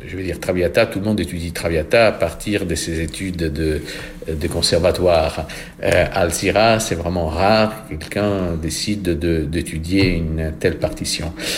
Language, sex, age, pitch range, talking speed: French, male, 50-69, 85-110 Hz, 155 wpm